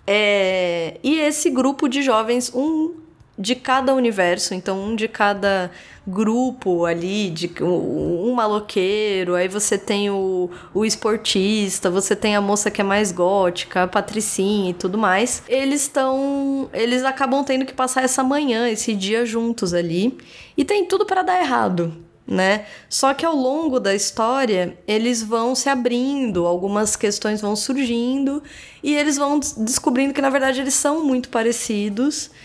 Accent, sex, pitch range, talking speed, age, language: Brazilian, female, 195-270 Hz, 155 wpm, 10-29, Portuguese